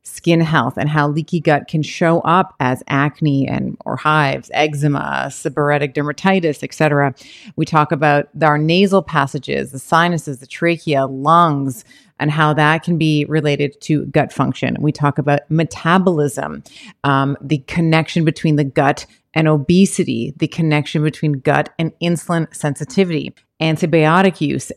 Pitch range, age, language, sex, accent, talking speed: 150-175 Hz, 30-49, English, female, American, 145 wpm